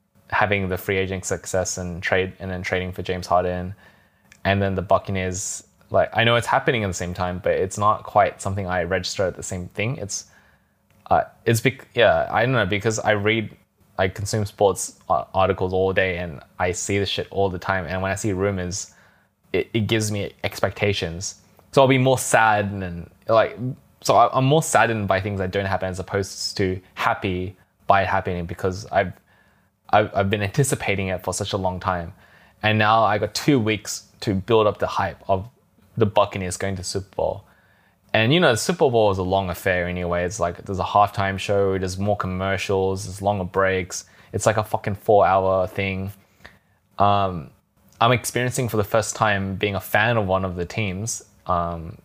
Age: 10-29